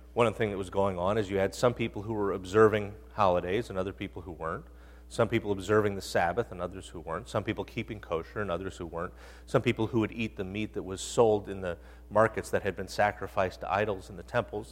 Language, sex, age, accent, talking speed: English, male, 30-49, American, 240 wpm